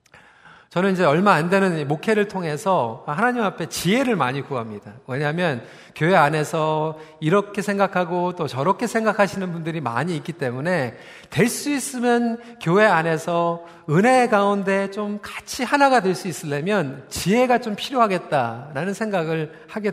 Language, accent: Korean, native